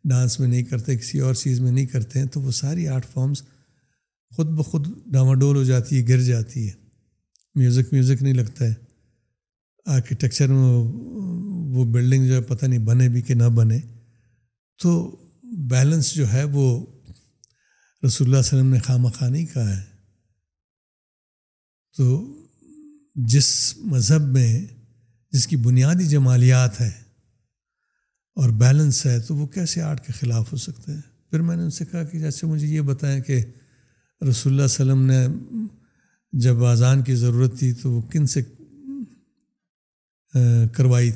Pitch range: 120-140 Hz